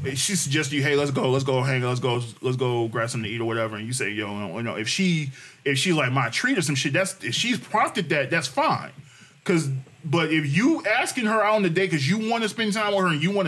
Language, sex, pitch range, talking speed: English, male, 140-205 Hz, 295 wpm